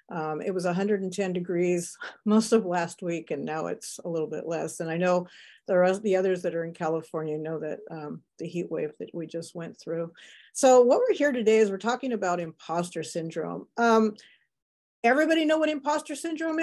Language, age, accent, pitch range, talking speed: English, 50-69, American, 175-235 Hz, 200 wpm